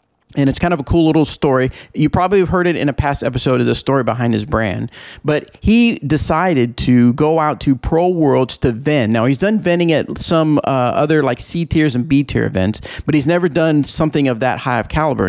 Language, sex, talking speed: English, male, 230 wpm